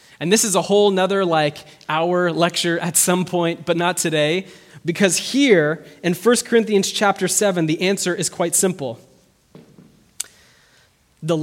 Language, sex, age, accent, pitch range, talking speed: English, male, 20-39, American, 140-185 Hz, 145 wpm